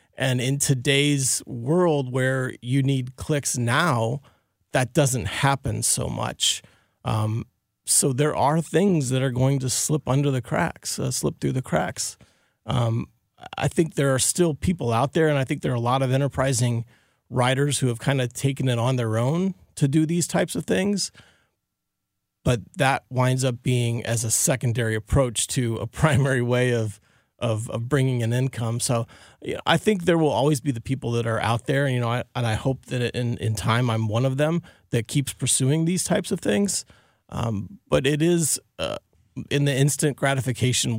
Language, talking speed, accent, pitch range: English, 190 wpm, American, 115-140 Hz